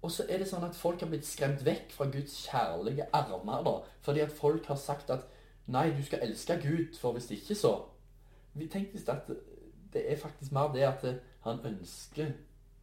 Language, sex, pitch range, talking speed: English, male, 110-140 Hz, 220 wpm